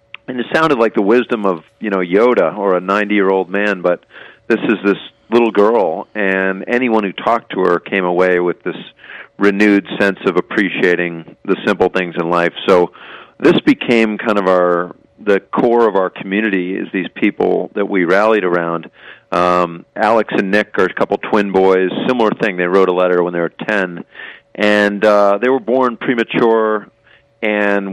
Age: 40-59